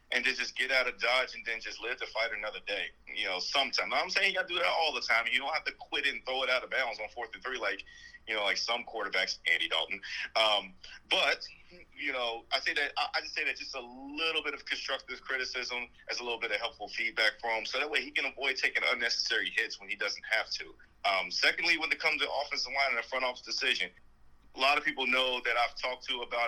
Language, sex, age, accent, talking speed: English, male, 30-49, American, 265 wpm